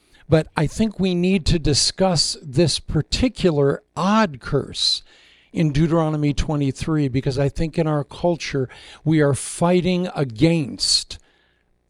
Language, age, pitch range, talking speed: English, 60-79, 135-170 Hz, 120 wpm